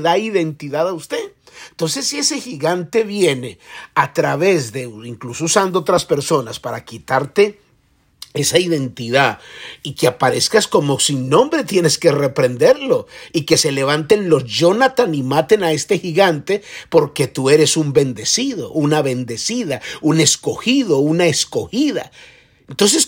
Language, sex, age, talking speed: Spanish, male, 50-69, 135 wpm